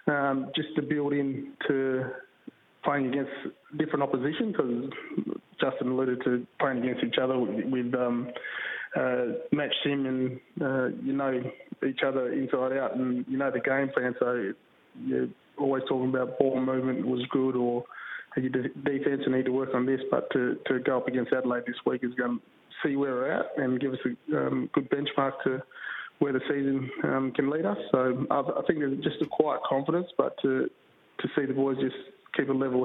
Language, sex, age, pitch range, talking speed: English, male, 20-39, 125-135 Hz, 190 wpm